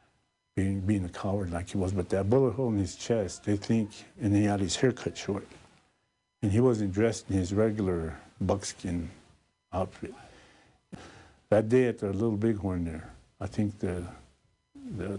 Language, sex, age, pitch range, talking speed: English, male, 60-79, 90-105 Hz, 170 wpm